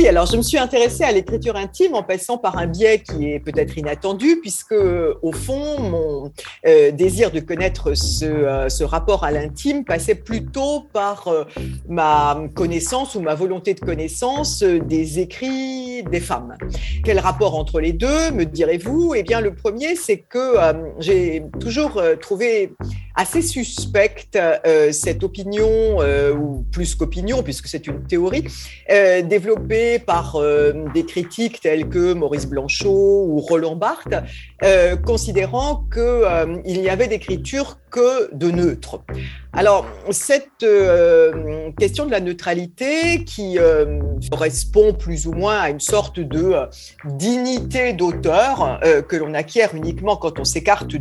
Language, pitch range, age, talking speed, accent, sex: French, 155-255 Hz, 50-69, 150 wpm, French, female